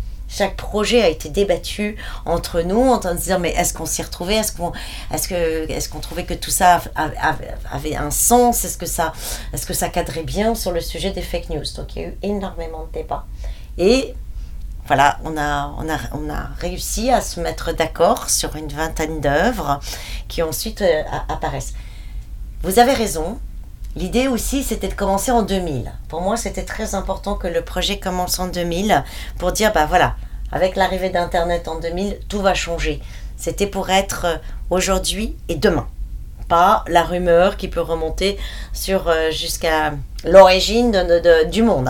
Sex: female